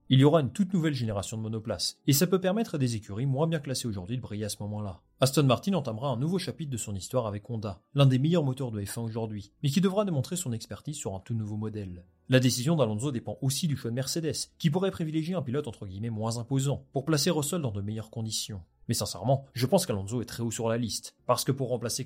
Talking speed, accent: 255 wpm, French